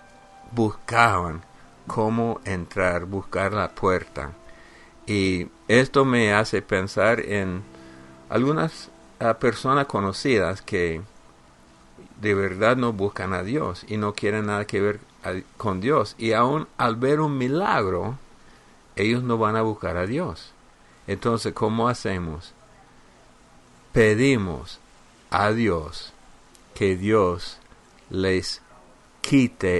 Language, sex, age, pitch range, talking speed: English, male, 50-69, 95-115 Hz, 110 wpm